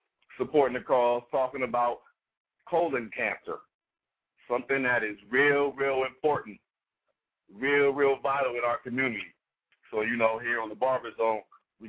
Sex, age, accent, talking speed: male, 50-69, American, 140 wpm